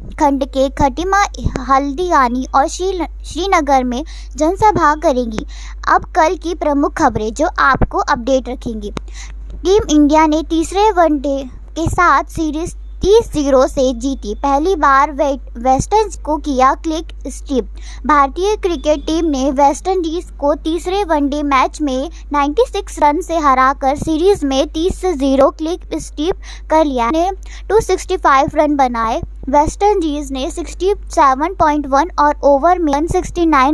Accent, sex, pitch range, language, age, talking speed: native, male, 275-345 Hz, Hindi, 20-39, 125 wpm